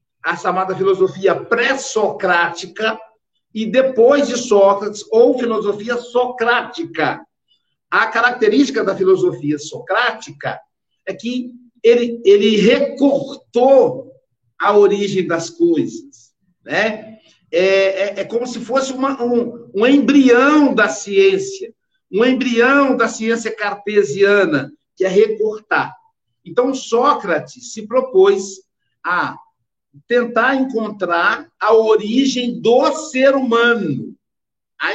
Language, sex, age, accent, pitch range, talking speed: Portuguese, male, 60-79, Brazilian, 200-265 Hz, 100 wpm